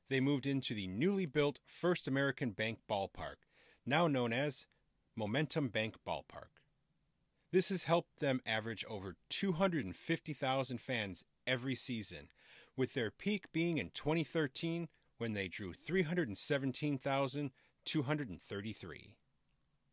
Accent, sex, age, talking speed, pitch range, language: American, male, 40-59, 110 wpm, 110-155 Hz, English